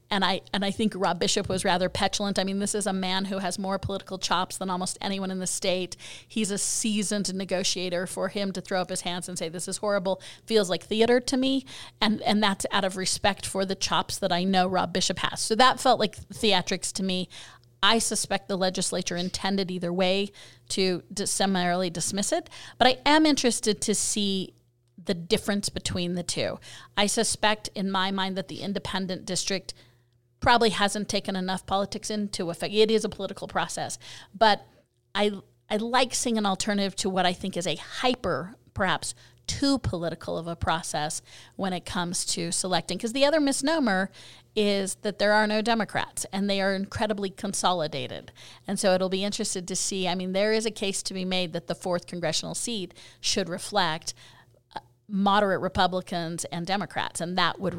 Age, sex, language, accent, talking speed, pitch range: 30-49, female, English, American, 190 wpm, 180-210 Hz